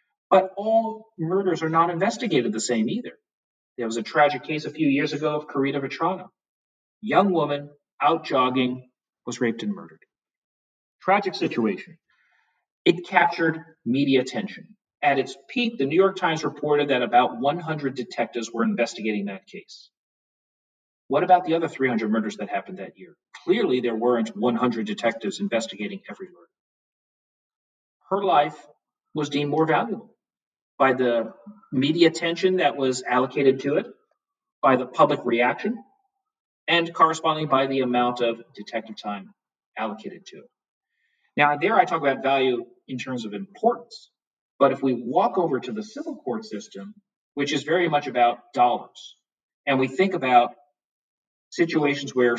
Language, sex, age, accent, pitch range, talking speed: English, male, 40-59, American, 125-185 Hz, 150 wpm